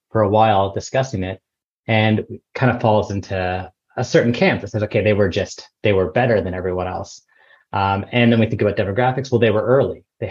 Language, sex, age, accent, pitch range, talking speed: English, male, 20-39, American, 95-115 Hz, 215 wpm